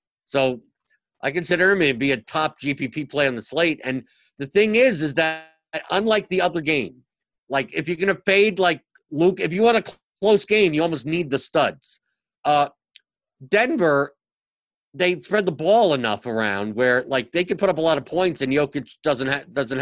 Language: English